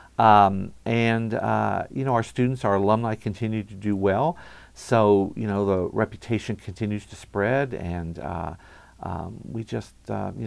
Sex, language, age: male, English, 50-69